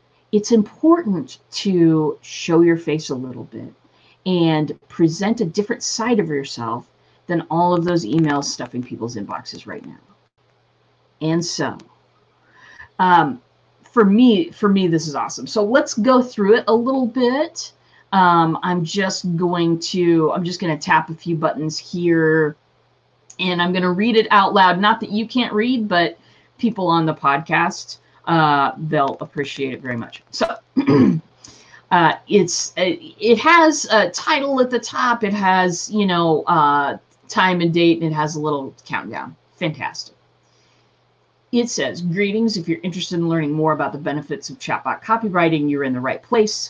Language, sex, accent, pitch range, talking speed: English, female, American, 155-210 Hz, 165 wpm